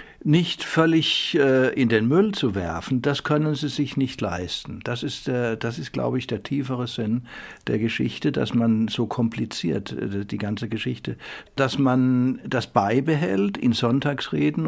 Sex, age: male, 60-79